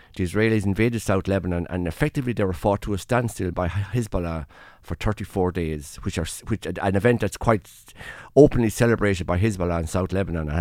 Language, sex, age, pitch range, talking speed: English, male, 60-79, 90-110 Hz, 185 wpm